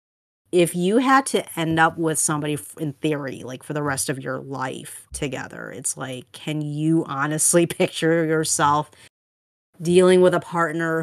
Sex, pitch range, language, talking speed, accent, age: female, 145-165 Hz, English, 160 wpm, American, 30-49